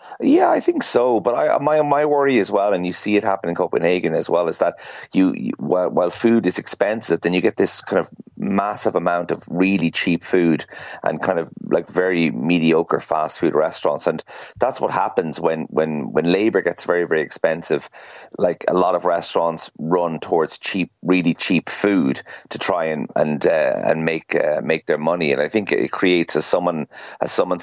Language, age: English, 30-49